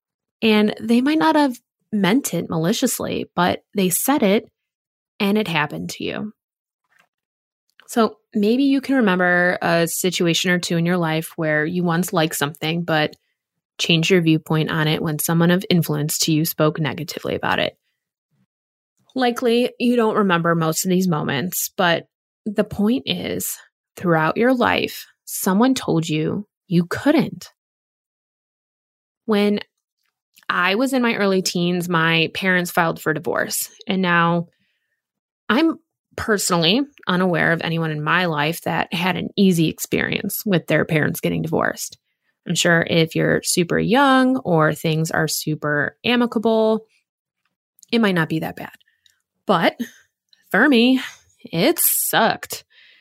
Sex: female